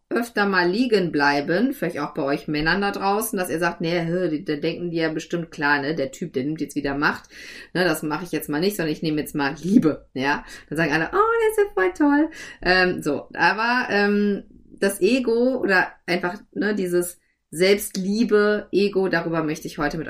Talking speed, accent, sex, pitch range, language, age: 205 wpm, German, female, 160-200 Hz, German, 30-49